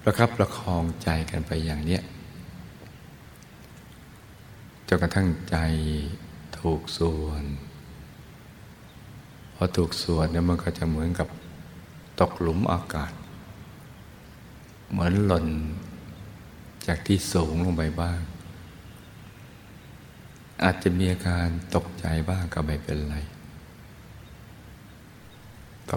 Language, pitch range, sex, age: Thai, 80-90 Hz, male, 60-79